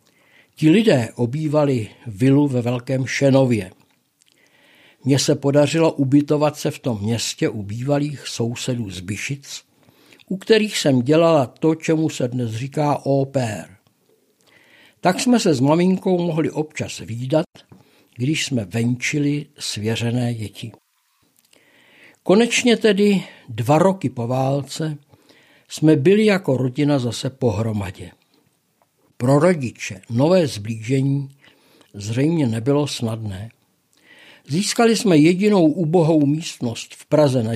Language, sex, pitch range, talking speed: Czech, male, 120-155 Hz, 110 wpm